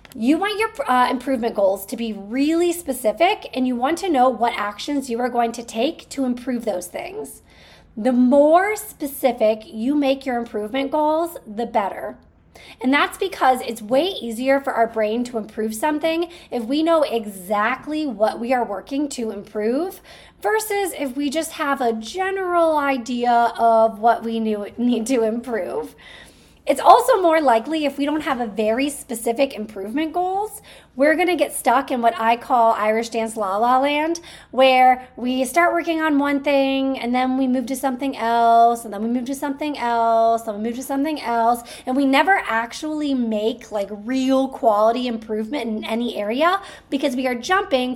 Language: English